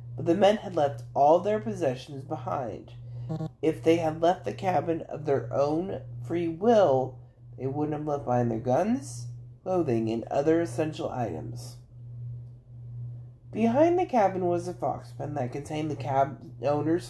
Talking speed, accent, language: 155 wpm, American, English